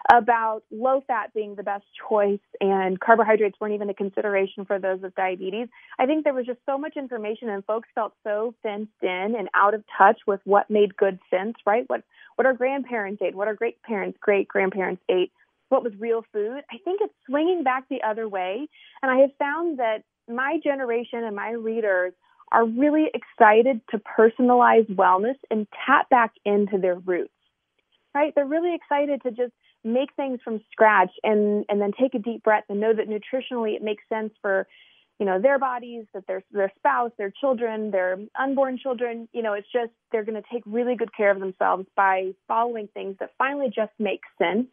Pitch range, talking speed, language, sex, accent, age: 205-250 Hz, 195 wpm, English, female, American, 30-49